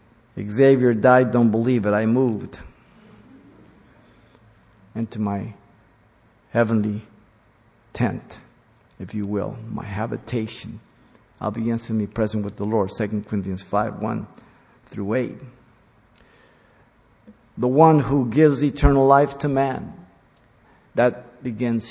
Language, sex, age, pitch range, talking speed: English, male, 50-69, 110-125 Hz, 110 wpm